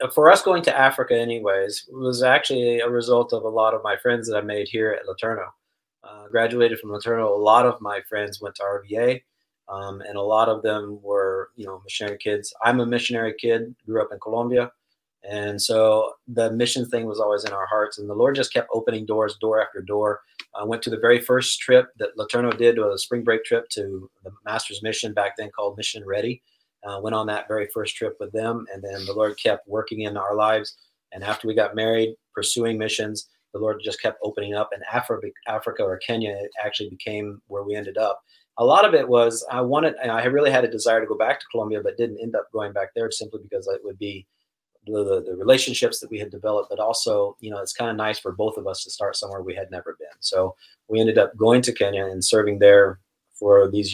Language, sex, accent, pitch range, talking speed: English, male, American, 105-120 Hz, 230 wpm